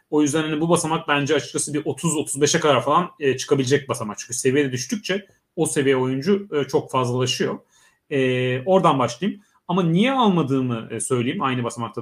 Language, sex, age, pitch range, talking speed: Turkish, male, 30-49, 130-190 Hz, 165 wpm